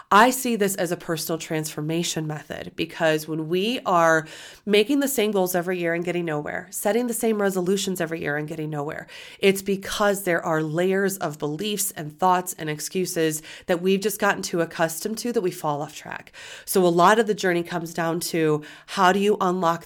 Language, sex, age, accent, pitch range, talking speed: English, female, 30-49, American, 155-190 Hz, 200 wpm